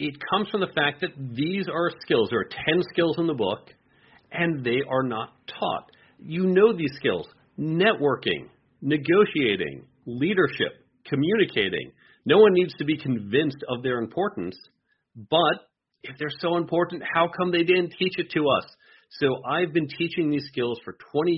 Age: 40-59